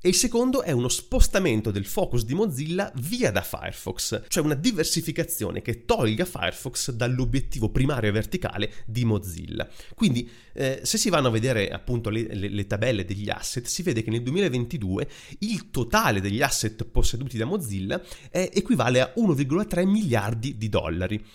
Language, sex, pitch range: Italian, male, 105-135 Hz